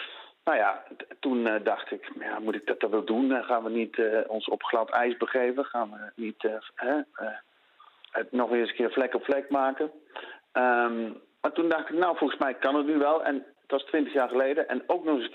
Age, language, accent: 50-69, Dutch, Dutch